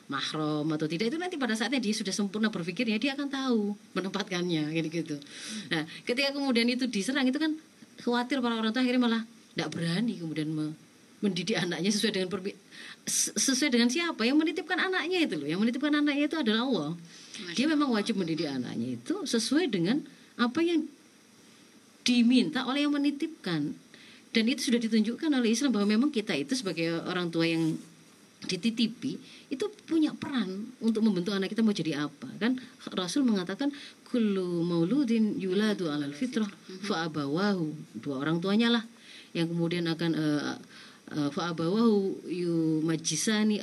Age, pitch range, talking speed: 30-49, 170-255 Hz, 155 wpm